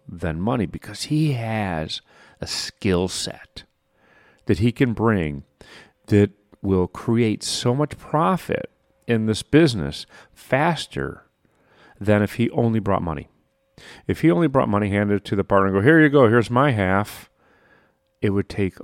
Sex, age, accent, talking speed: male, 40-59, American, 155 wpm